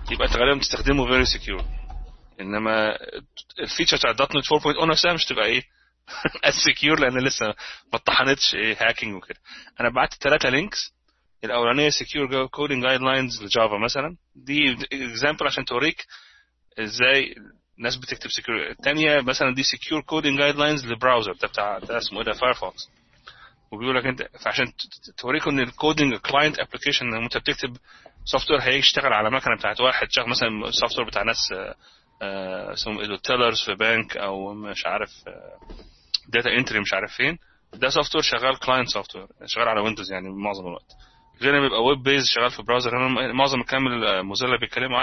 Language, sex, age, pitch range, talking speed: Arabic, male, 30-49, 110-140 Hz, 155 wpm